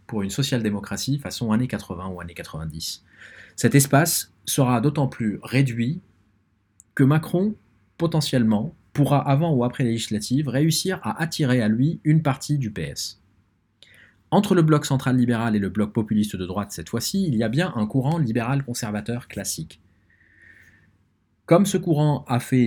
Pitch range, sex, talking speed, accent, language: 105-140 Hz, male, 155 wpm, French, French